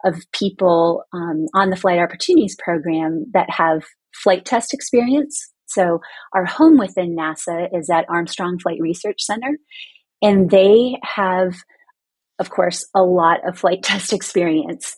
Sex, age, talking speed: female, 30-49, 140 wpm